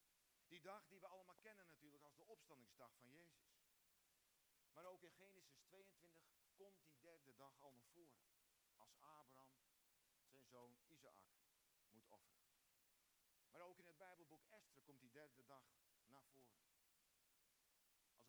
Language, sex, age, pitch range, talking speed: Dutch, male, 50-69, 125-180 Hz, 145 wpm